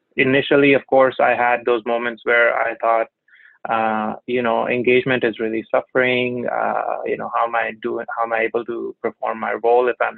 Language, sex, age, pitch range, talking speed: English, male, 20-39, 120-140 Hz, 200 wpm